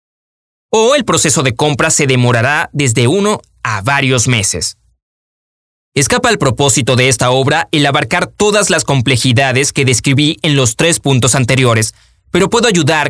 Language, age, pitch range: Spanish, 20-39, 120-160 Hz